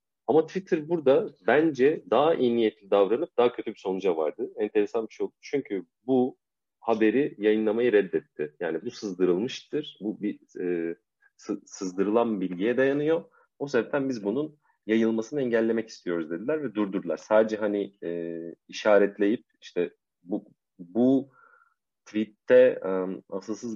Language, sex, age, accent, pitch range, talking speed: Turkish, male, 40-59, native, 100-150 Hz, 130 wpm